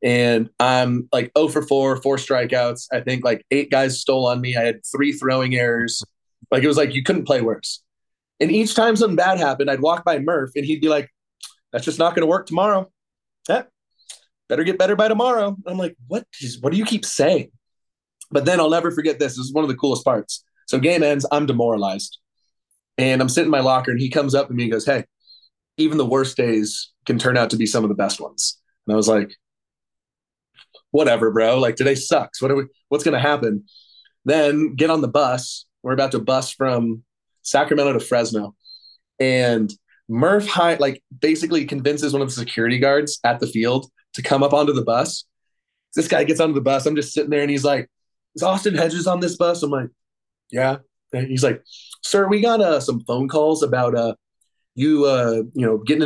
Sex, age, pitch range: male, 30-49, 120-155 Hz